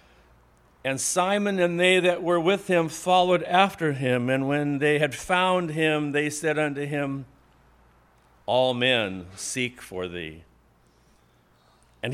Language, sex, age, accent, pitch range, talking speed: English, male, 50-69, American, 105-155 Hz, 135 wpm